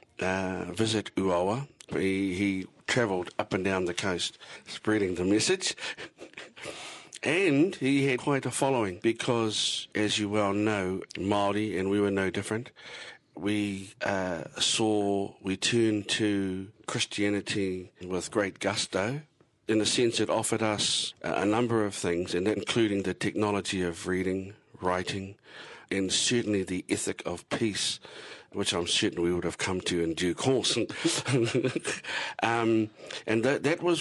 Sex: male